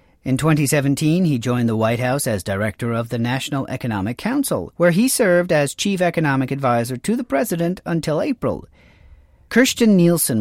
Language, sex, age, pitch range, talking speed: English, male, 40-59, 120-170 Hz, 160 wpm